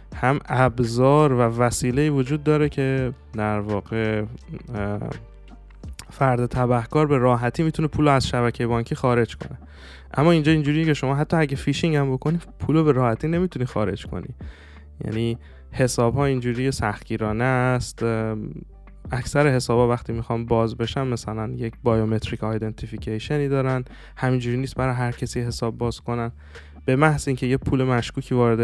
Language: Persian